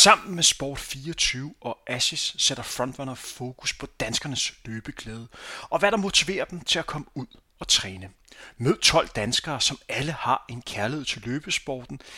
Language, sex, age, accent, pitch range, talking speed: Danish, male, 30-49, native, 120-165 Hz, 160 wpm